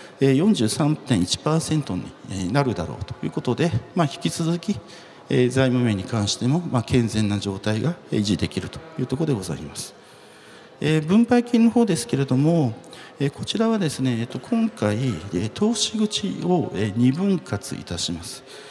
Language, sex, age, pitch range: Japanese, male, 50-69, 125-185 Hz